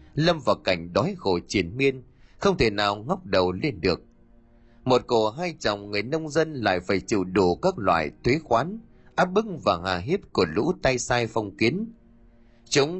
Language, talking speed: Vietnamese, 190 wpm